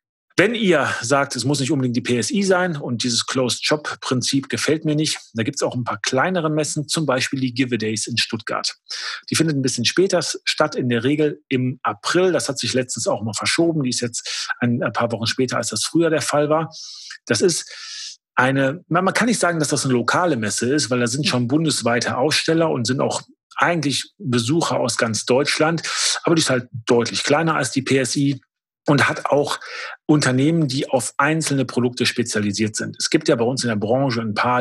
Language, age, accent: German, 40-59, German